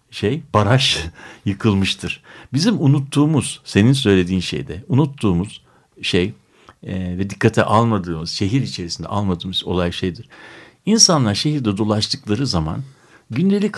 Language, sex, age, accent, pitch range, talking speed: Turkish, male, 60-79, native, 105-155 Hz, 105 wpm